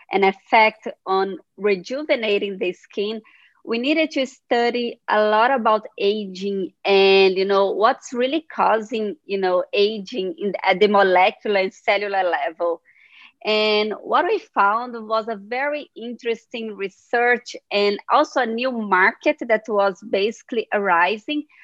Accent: Brazilian